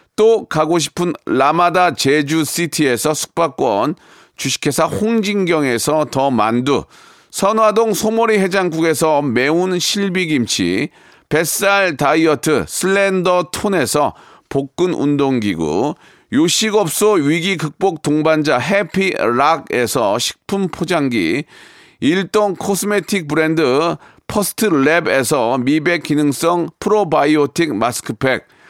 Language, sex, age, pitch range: Korean, male, 40-59, 155-200 Hz